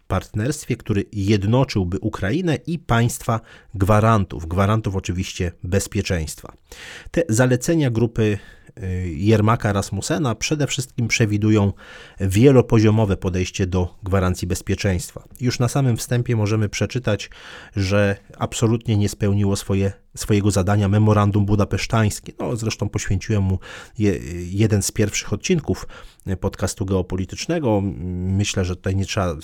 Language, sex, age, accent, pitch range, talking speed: Polish, male, 30-49, native, 95-115 Hz, 110 wpm